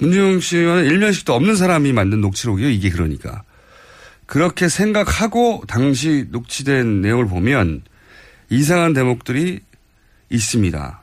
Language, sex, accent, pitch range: Korean, male, native, 100-160 Hz